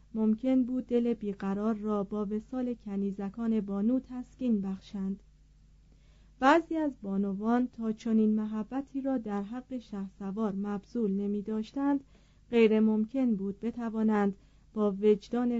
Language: Persian